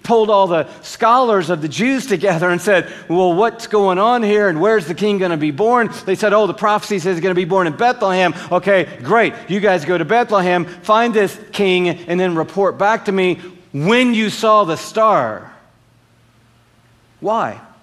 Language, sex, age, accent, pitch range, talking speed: English, male, 50-69, American, 145-195 Hz, 195 wpm